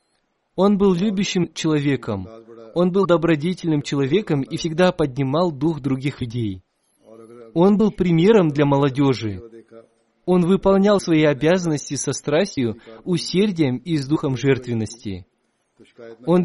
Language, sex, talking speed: Russian, male, 115 wpm